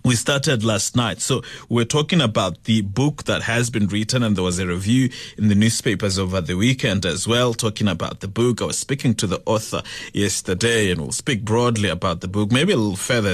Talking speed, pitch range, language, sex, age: 220 wpm, 100-115 Hz, English, male, 30-49